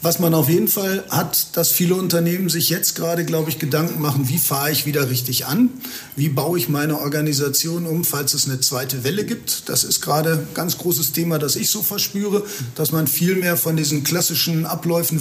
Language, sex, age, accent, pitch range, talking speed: German, male, 40-59, German, 150-175 Hz, 210 wpm